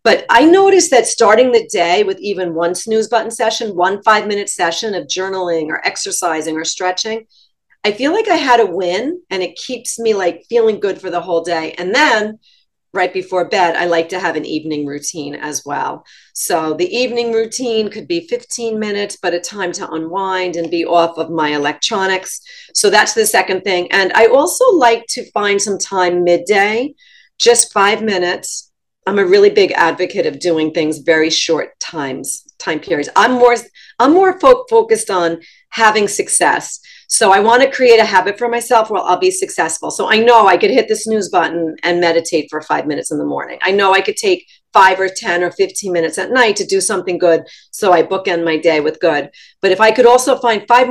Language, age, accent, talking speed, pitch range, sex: English, 40-59, American, 205 wpm, 175-235 Hz, female